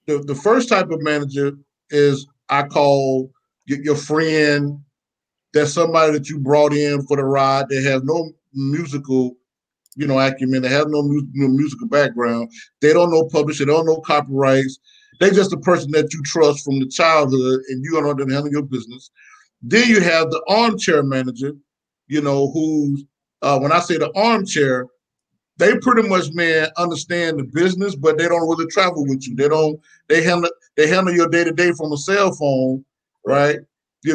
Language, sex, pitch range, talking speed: English, male, 145-180 Hz, 185 wpm